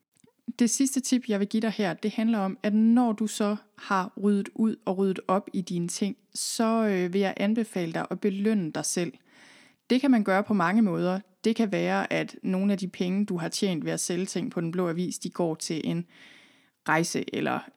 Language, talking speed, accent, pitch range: Danish, 220 wpm, native, 185-225 Hz